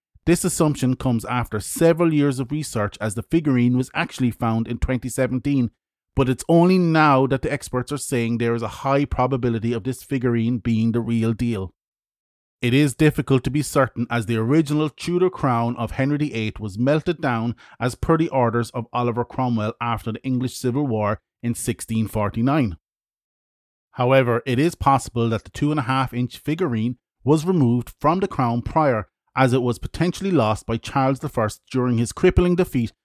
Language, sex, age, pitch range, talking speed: English, male, 30-49, 115-150 Hz, 175 wpm